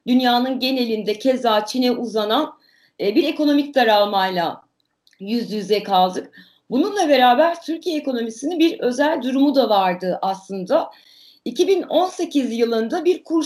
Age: 40-59